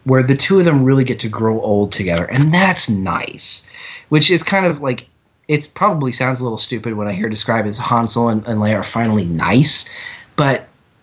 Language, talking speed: English, 210 wpm